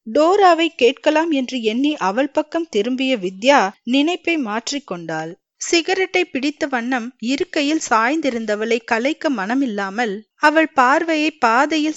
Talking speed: 105 wpm